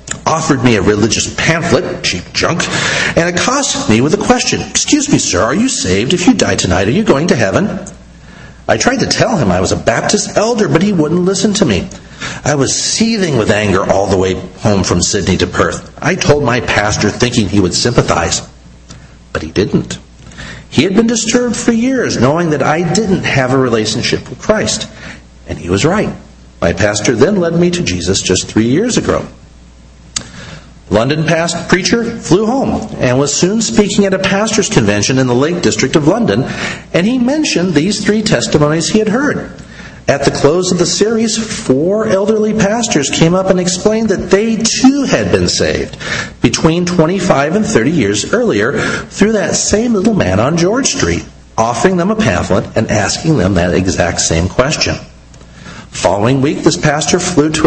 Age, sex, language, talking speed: 50-69, male, English, 185 wpm